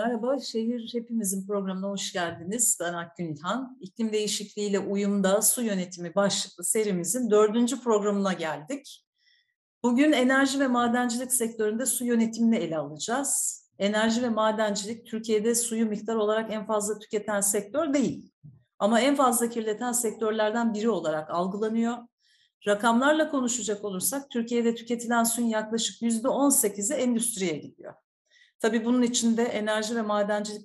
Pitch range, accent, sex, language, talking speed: 195-240 Hz, native, female, Turkish, 125 wpm